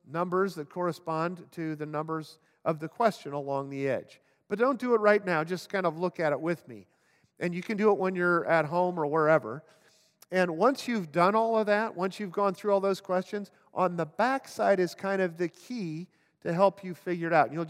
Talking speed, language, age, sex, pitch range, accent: 225 wpm, English, 50-69, male, 150-190 Hz, American